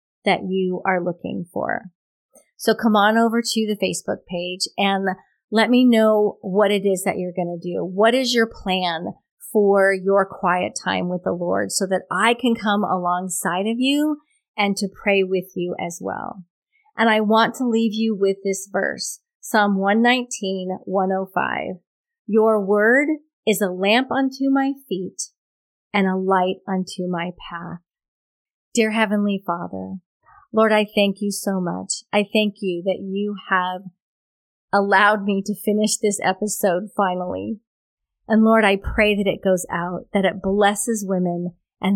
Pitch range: 185-215 Hz